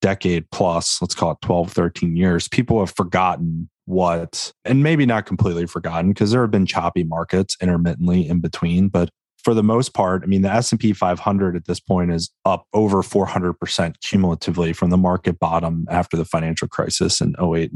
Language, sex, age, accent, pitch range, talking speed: English, male, 30-49, American, 85-105 Hz, 185 wpm